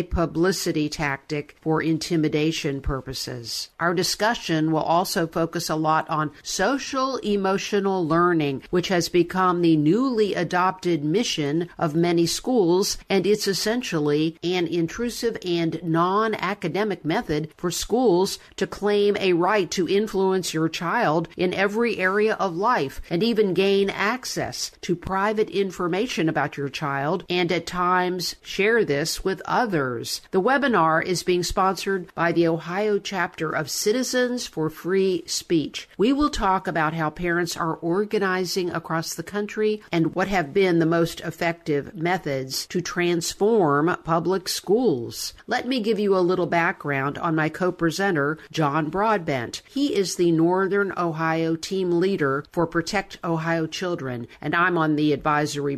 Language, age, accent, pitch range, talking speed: English, 50-69, American, 160-195 Hz, 140 wpm